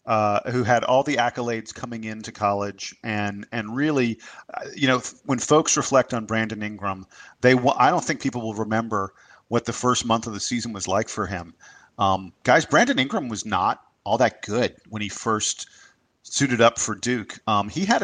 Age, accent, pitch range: 40-59, American, 110-130 Hz